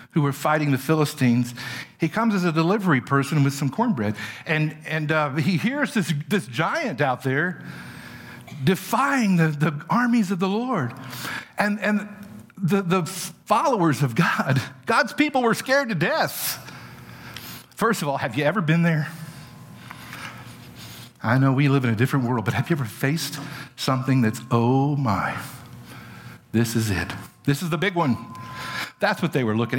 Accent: American